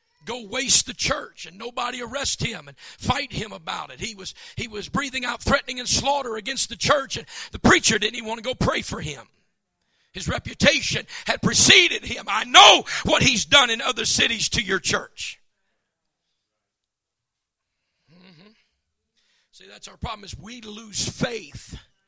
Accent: American